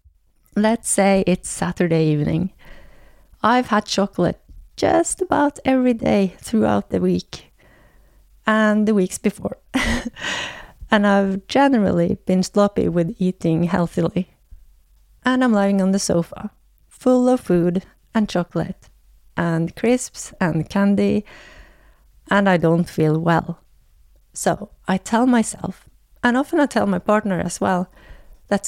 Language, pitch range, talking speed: English, 175-220 Hz, 125 wpm